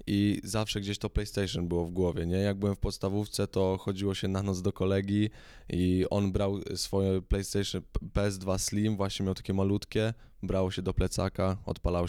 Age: 20-39